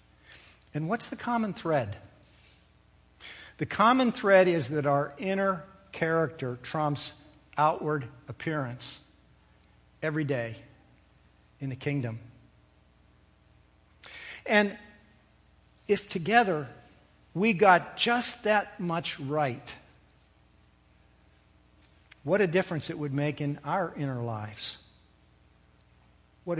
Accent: American